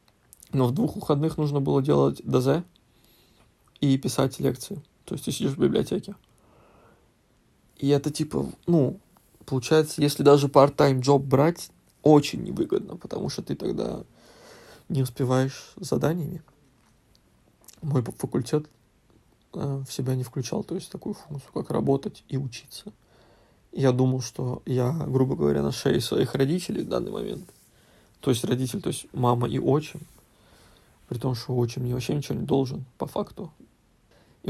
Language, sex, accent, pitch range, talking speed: Russian, male, native, 125-150 Hz, 150 wpm